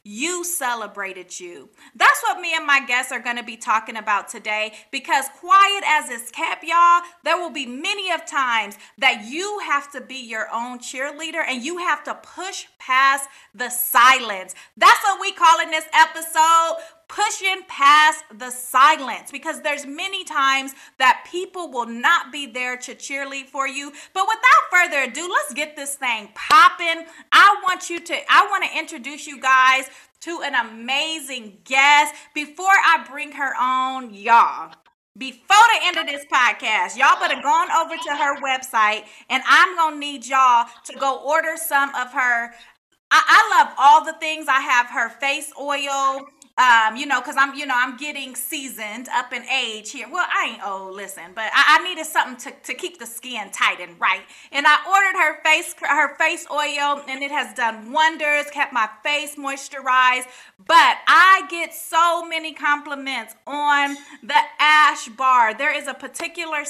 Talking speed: 175 wpm